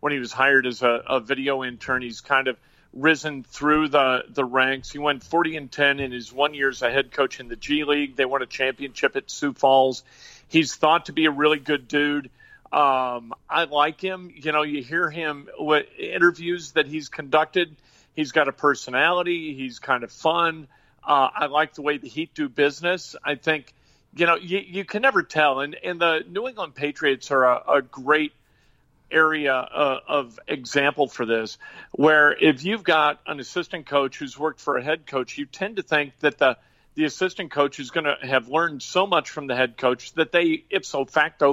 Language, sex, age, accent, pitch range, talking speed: English, male, 40-59, American, 135-165 Hz, 205 wpm